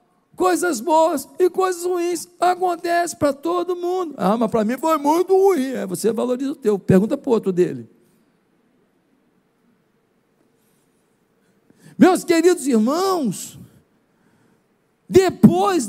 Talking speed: 115 wpm